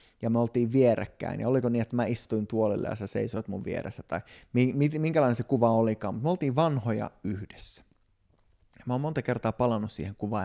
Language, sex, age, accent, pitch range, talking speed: Finnish, male, 30-49, native, 100-120 Hz, 195 wpm